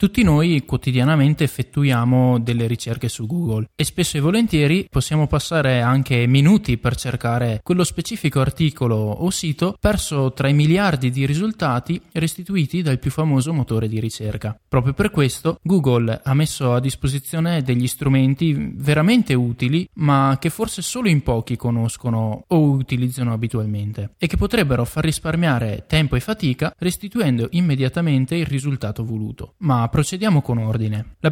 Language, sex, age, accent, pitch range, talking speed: Italian, male, 20-39, native, 125-165 Hz, 145 wpm